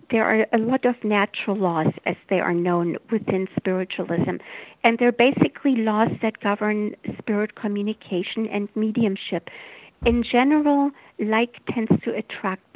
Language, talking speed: English, 135 wpm